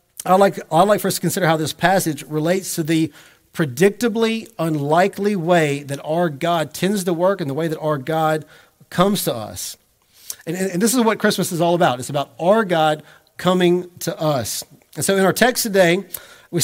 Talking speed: 200 wpm